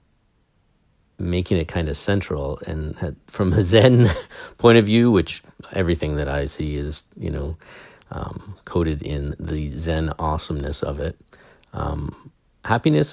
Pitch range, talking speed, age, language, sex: 80-100 Hz, 135 wpm, 40-59, English, male